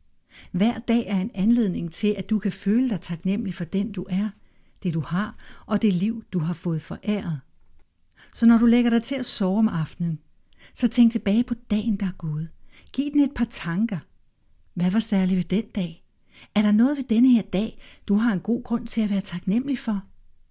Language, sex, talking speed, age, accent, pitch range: Danish, female, 210 wpm, 60-79, native, 175-225 Hz